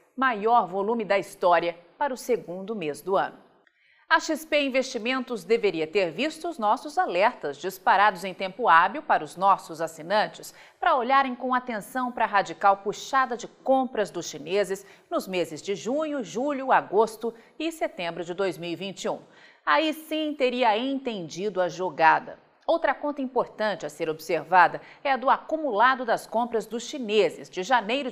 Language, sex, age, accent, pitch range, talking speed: Portuguese, female, 40-59, Brazilian, 190-265 Hz, 150 wpm